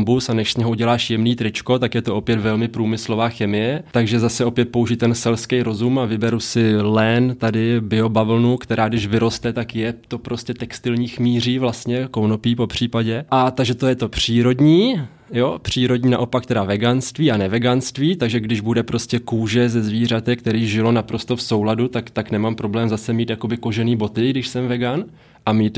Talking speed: 180 wpm